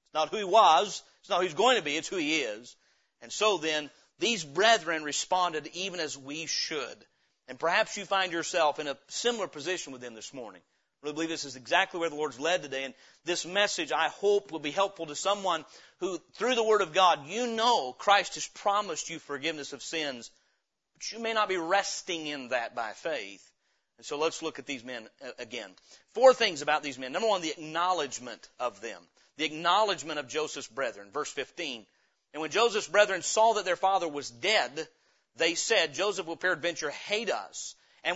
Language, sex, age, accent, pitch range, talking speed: English, male, 40-59, American, 155-200 Hz, 200 wpm